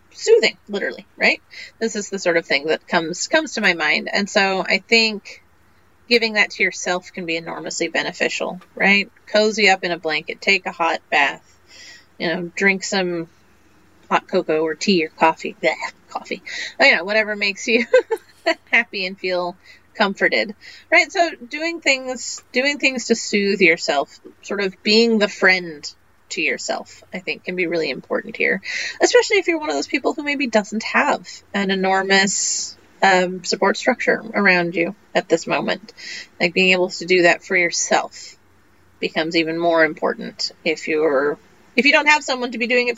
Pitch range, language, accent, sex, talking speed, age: 180-255 Hz, English, American, female, 175 wpm, 30-49